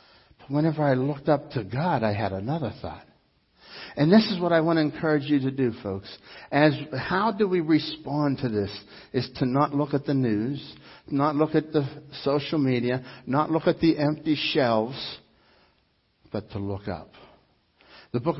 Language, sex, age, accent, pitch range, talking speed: English, male, 60-79, American, 130-175 Hz, 175 wpm